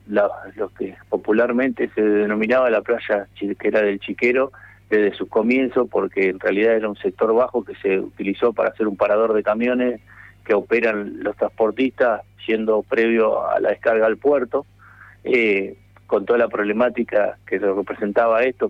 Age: 50-69